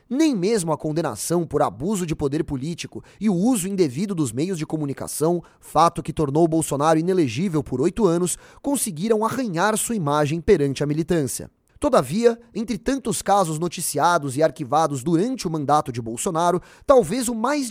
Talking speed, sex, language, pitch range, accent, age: 160 wpm, male, Portuguese, 150-210 Hz, Brazilian, 20-39